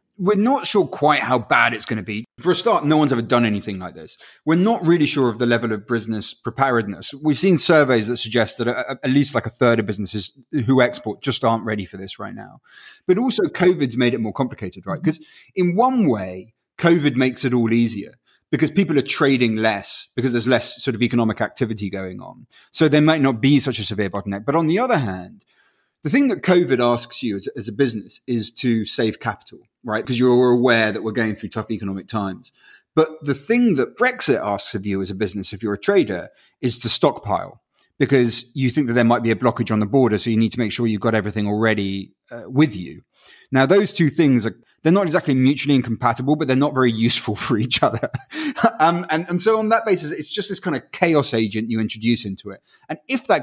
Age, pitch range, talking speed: 30-49, 110-150 Hz, 230 wpm